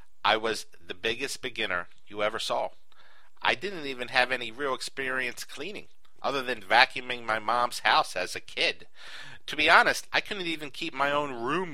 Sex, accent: male, American